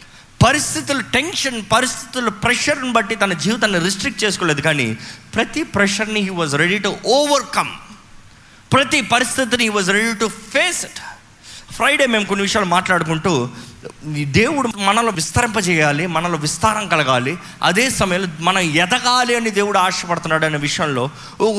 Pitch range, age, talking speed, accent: 155-225 Hz, 20-39, 130 wpm, native